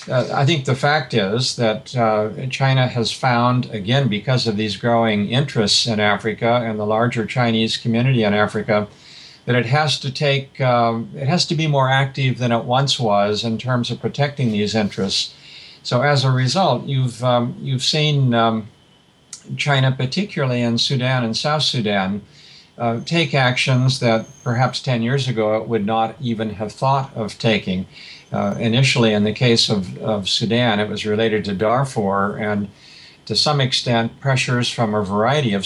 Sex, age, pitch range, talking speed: male, 60-79, 110-130 Hz, 170 wpm